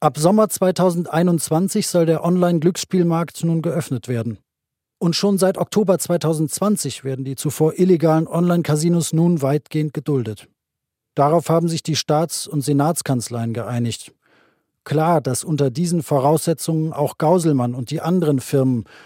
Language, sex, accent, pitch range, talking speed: German, male, German, 140-175 Hz, 130 wpm